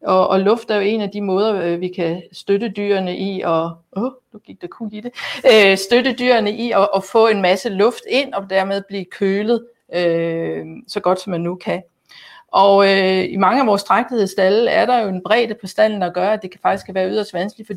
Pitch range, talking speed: 185-225 Hz, 195 wpm